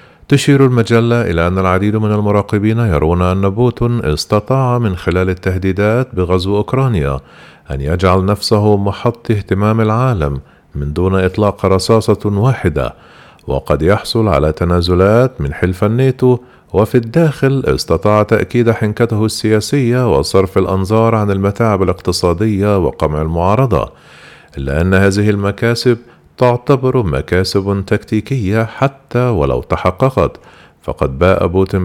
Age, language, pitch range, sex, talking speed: 40-59, Arabic, 90-115 Hz, male, 115 wpm